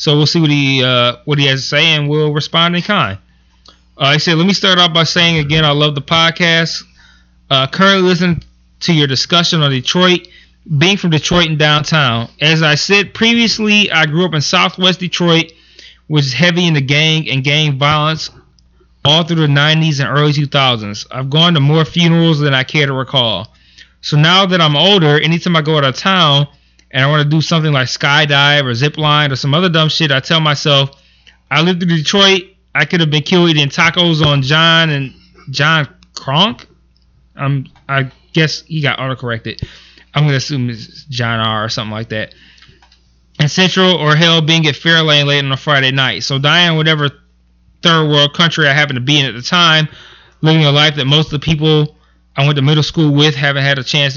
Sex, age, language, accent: male, 20-39, English, American